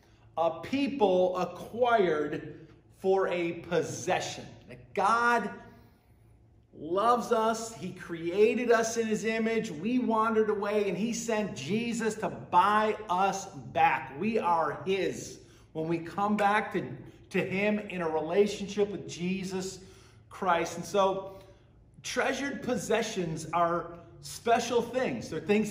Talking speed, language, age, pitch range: 120 wpm, English, 50-69, 160-215 Hz